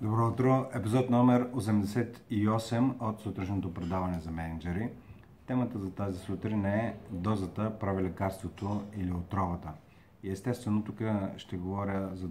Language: Bulgarian